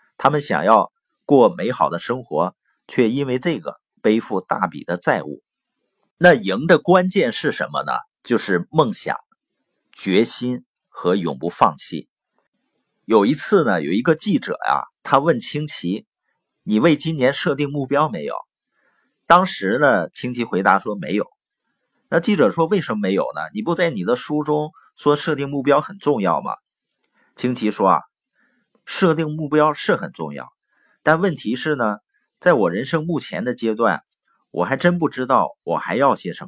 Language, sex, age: Chinese, male, 50-69